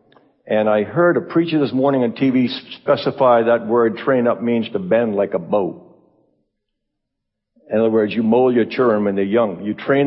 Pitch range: 115-155 Hz